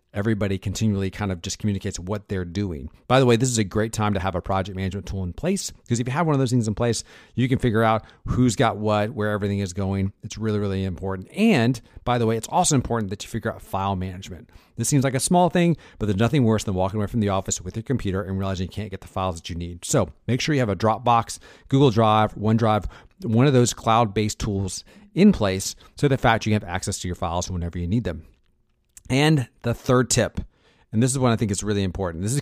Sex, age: male, 40-59